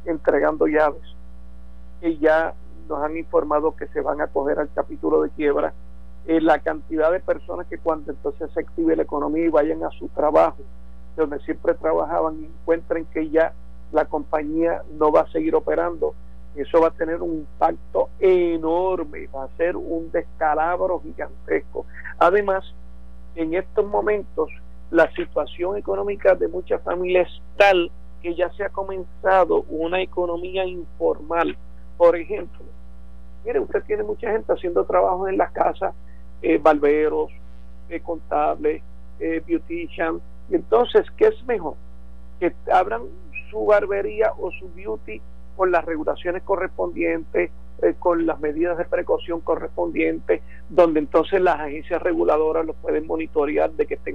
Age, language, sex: 50-69, Spanish, male